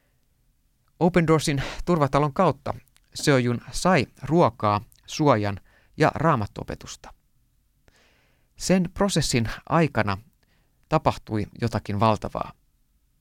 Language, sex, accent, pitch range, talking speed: Finnish, male, native, 105-150 Hz, 75 wpm